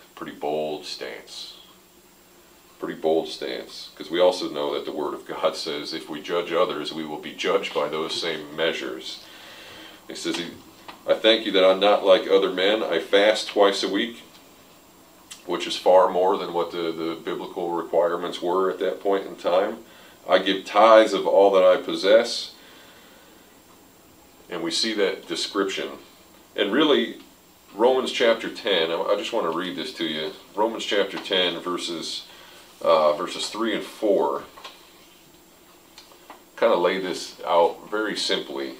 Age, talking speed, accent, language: 40-59, 160 wpm, American, English